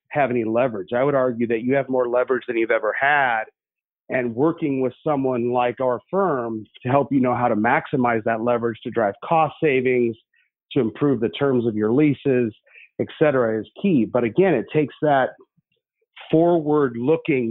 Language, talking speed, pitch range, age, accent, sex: English, 175 wpm, 115-150 Hz, 40-59, American, male